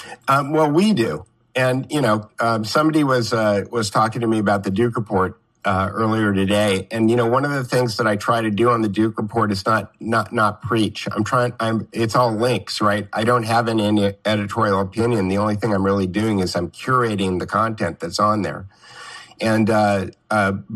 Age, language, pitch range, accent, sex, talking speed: 50-69, English, 105-125 Hz, American, male, 215 wpm